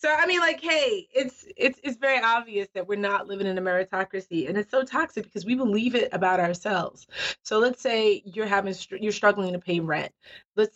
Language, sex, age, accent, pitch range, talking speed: English, female, 30-49, American, 175-220 Hz, 210 wpm